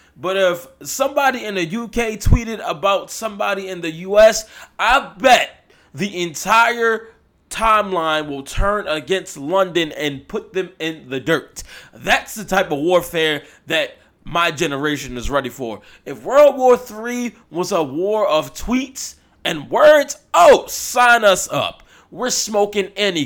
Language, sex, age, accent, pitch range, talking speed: English, male, 20-39, American, 150-235 Hz, 145 wpm